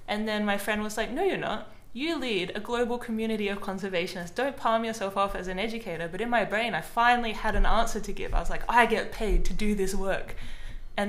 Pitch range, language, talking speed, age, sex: 190-240 Hz, English, 245 wpm, 20-39, female